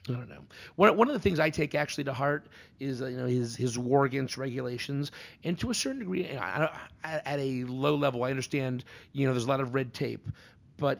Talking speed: 240 wpm